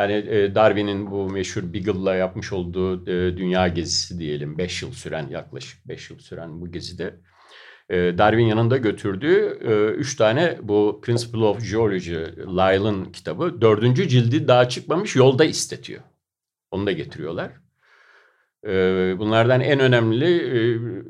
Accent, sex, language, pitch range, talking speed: native, male, Turkish, 90-115 Hz, 120 wpm